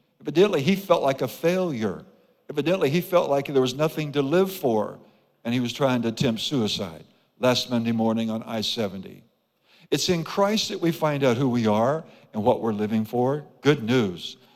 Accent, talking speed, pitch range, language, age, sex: American, 185 wpm, 125-175 Hz, English, 60-79, male